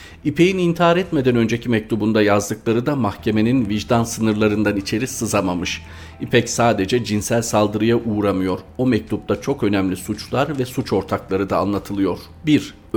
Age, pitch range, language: 40-59, 100-115 Hz, Turkish